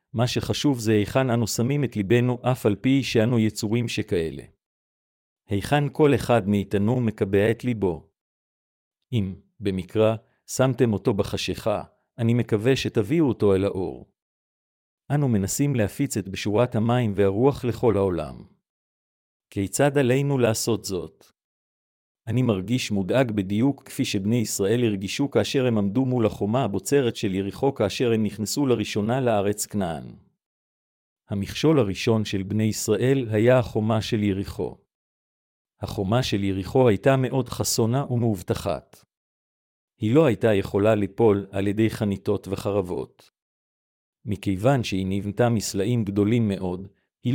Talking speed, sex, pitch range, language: 125 wpm, male, 100-125 Hz, Hebrew